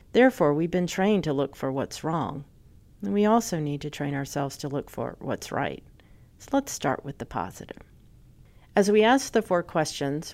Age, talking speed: 50-69, 190 wpm